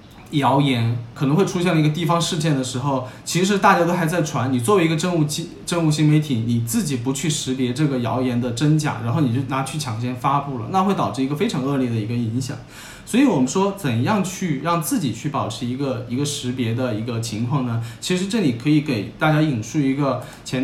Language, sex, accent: Chinese, male, native